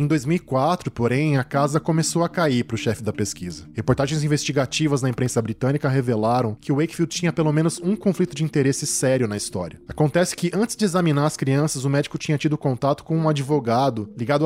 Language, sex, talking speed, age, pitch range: Portuguese, male, 200 wpm, 10-29, 125-160 Hz